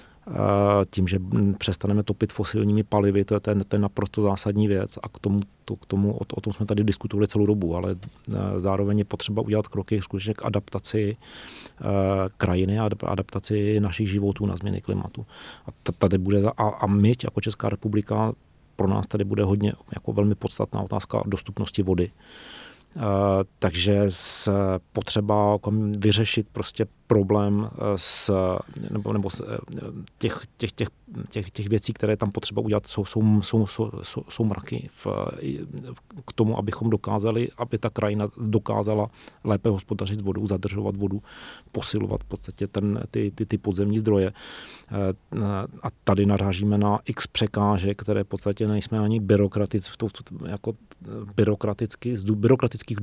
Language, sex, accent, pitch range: Czech, male, native, 100-110 Hz